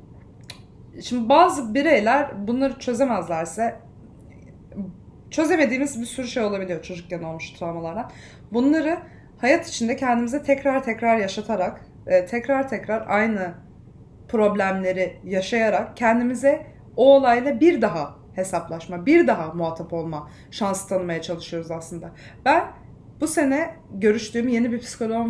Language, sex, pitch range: Turkish, female, 185-270 Hz